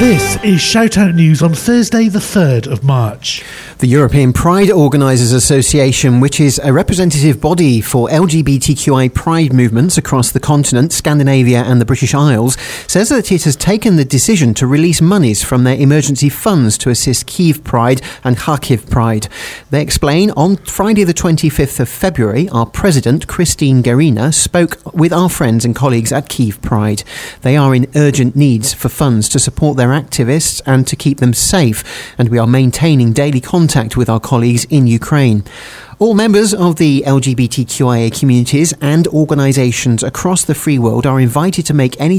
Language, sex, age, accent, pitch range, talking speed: English, male, 30-49, British, 125-155 Hz, 170 wpm